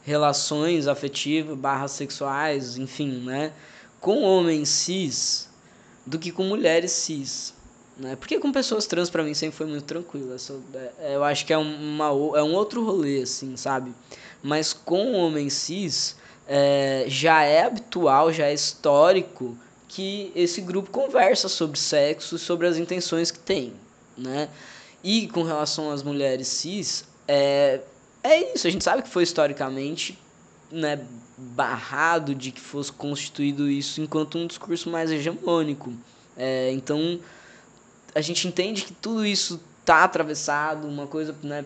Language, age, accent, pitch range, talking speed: Portuguese, 10-29, Brazilian, 135-165 Hz, 145 wpm